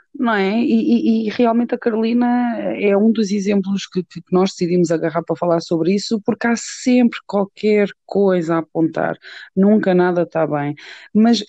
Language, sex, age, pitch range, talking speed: Portuguese, female, 20-39, 165-200 Hz, 160 wpm